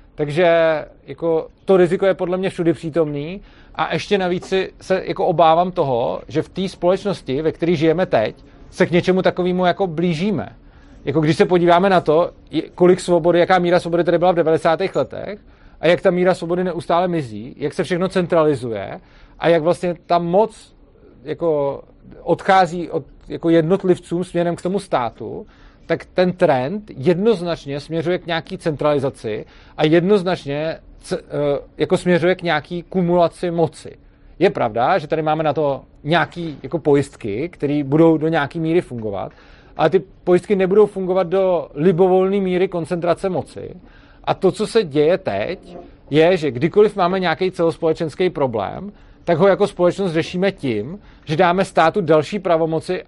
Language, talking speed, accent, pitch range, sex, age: Czech, 155 wpm, native, 160-185 Hz, male, 40-59